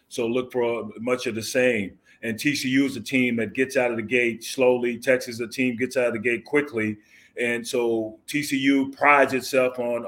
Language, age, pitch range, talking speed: English, 30-49, 120-135 Hz, 215 wpm